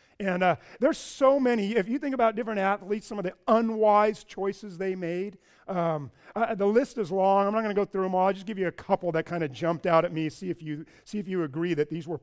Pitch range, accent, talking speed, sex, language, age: 160-205 Hz, American, 270 wpm, male, English, 40-59